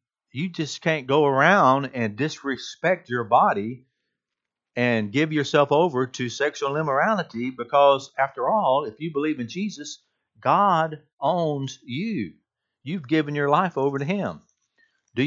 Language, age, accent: English, 50-69, American